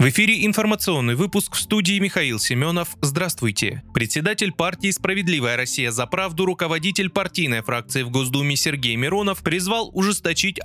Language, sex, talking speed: Russian, male, 135 wpm